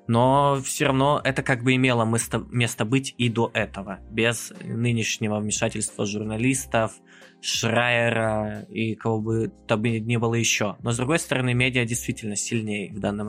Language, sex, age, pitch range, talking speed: Russian, male, 20-39, 105-130 Hz, 155 wpm